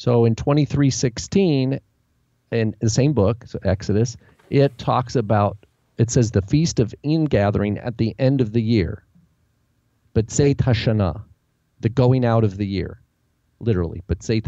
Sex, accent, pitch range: male, American, 100-125 Hz